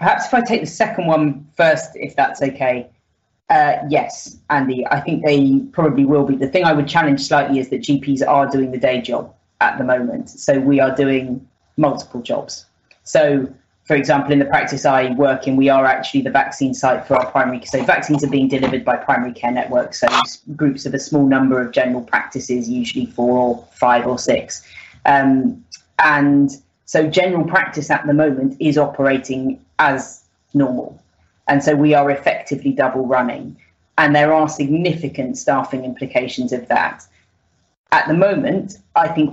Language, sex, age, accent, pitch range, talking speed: English, female, 20-39, British, 125-145 Hz, 180 wpm